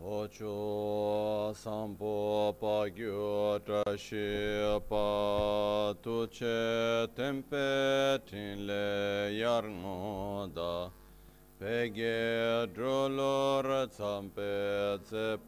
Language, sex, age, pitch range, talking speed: Italian, male, 40-59, 95-115 Hz, 55 wpm